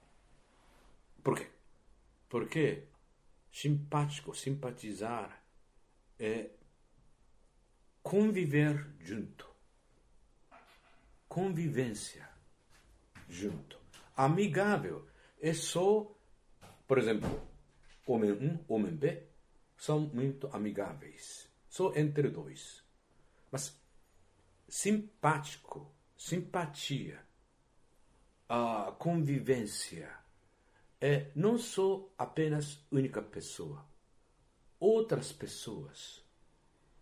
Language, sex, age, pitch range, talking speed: Portuguese, male, 60-79, 125-190 Hz, 60 wpm